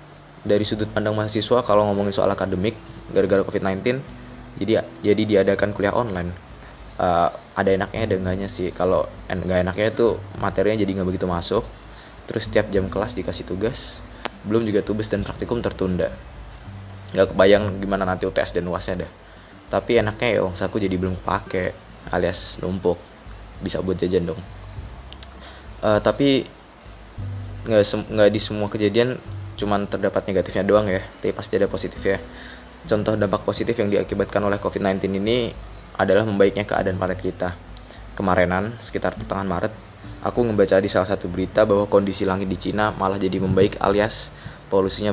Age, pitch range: 20-39, 95-105 Hz